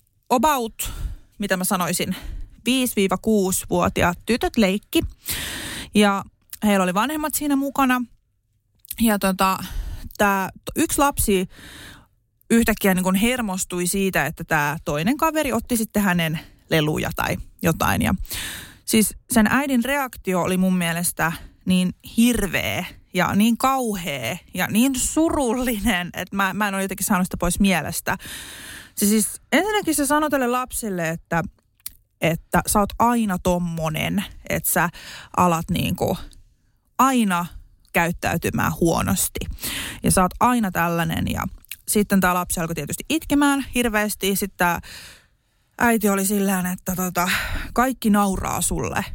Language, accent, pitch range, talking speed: Finnish, native, 180-240 Hz, 125 wpm